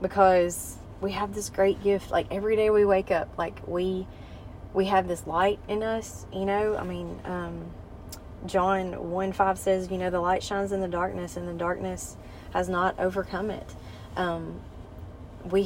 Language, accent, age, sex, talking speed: English, American, 20-39, female, 175 wpm